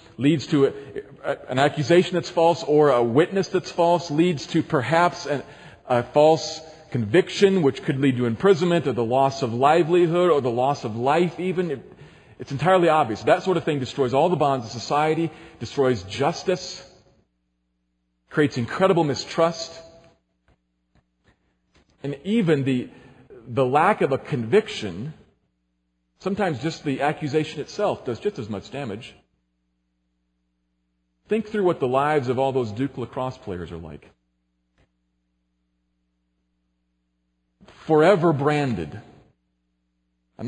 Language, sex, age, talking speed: English, male, 40-59, 125 wpm